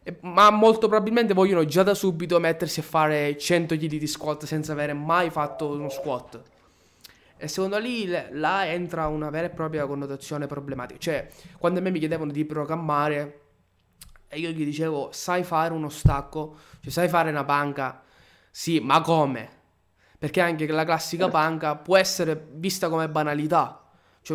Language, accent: Italian, native